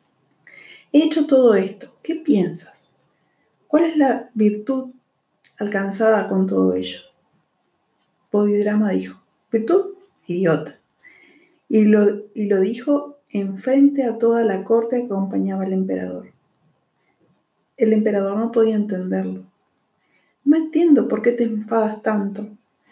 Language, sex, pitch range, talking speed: Spanish, female, 195-230 Hz, 115 wpm